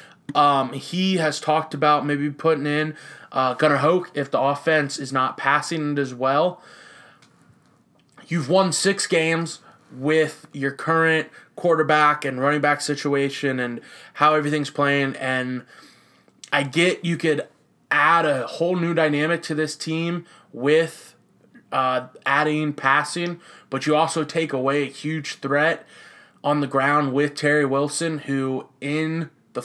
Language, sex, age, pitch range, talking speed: English, male, 20-39, 140-160 Hz, 145 wpm